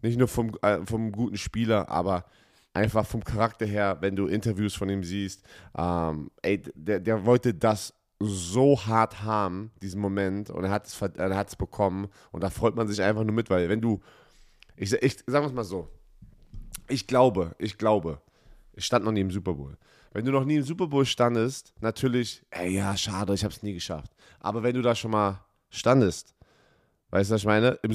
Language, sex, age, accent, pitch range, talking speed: German, male, 30-49, German, 100-120 Hz, 205 wpm